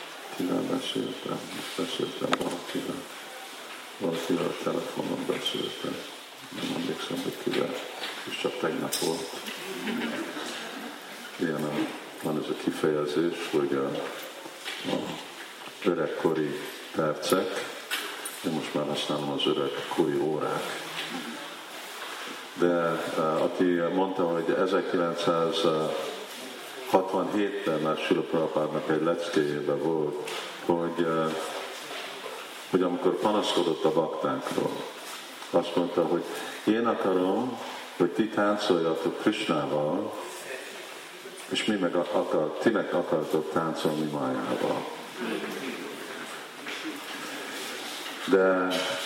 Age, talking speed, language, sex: 50-69, 90 wpm, Hungarian, male